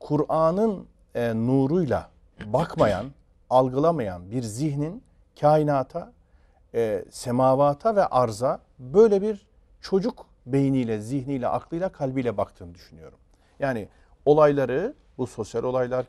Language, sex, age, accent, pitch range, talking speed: Turkish, male, 50-69, native, 125-190 Hz, 95 wpm